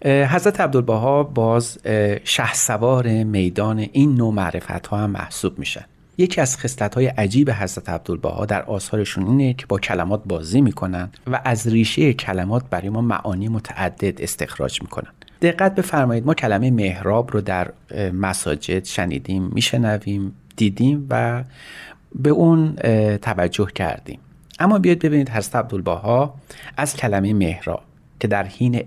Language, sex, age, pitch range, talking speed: Persian, male, 40-59, 100-140 Hz, 140 wpm